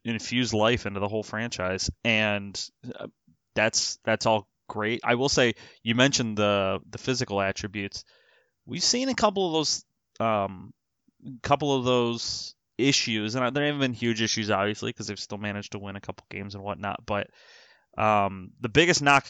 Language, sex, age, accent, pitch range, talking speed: English, male, 20-39, American, 100-115 Hz, 170 wpm